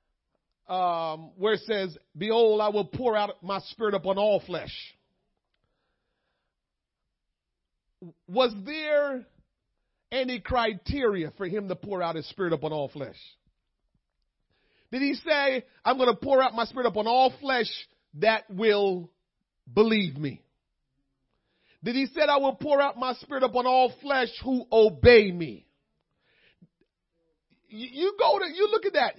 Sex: male